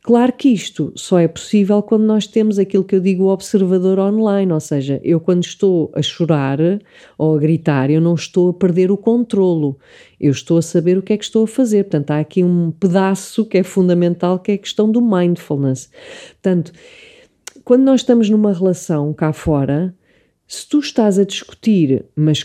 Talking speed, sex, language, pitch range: 190 wpm, female, English, 160-215 Hz